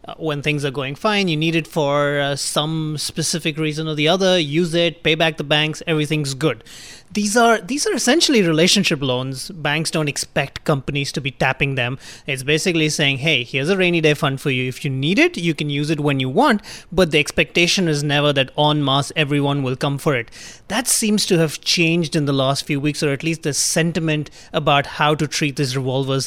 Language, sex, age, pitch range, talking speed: English, male, 30-49, 145-175 Hz, 215 wpm